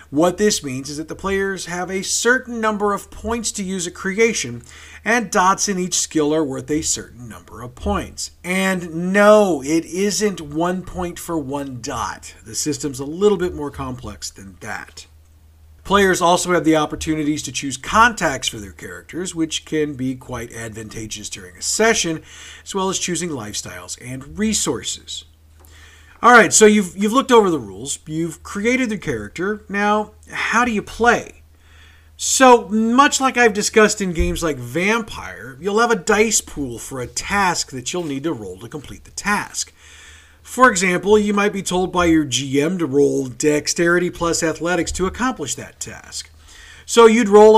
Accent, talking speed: American, 175 wpm